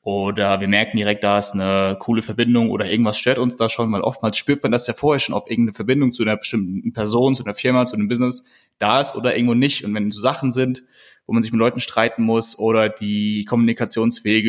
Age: 20-39